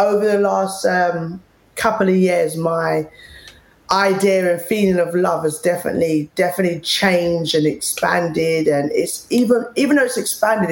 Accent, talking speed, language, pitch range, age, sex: British, 145 wpm, English, 175-225 Hz, 20-39, female